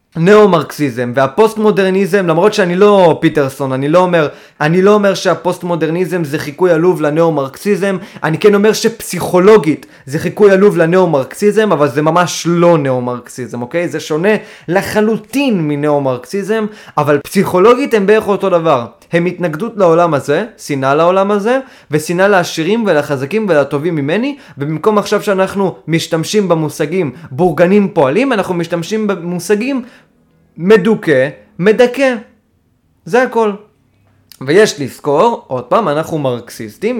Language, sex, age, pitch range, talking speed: Hebrew, male, 20-39, 150-210 Hz, 110 wpm